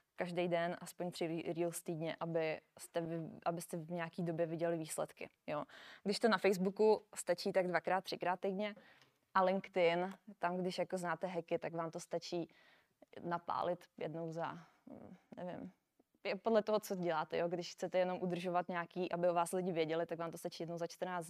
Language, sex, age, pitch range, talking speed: Czech, female, 20-39, 170-195 Hz, 180 wpm